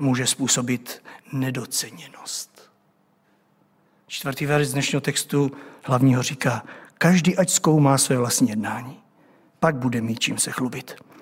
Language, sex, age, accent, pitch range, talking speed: Czech, male, 50-69, native, 135-170 Hz, 110 wpm